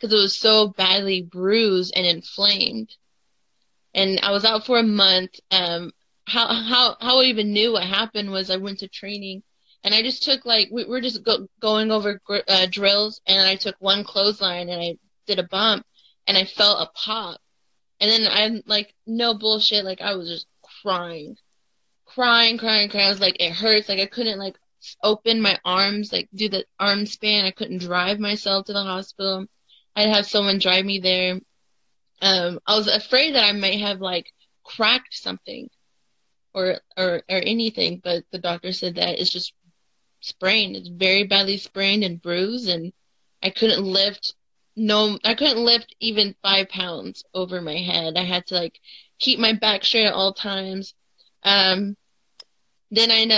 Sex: female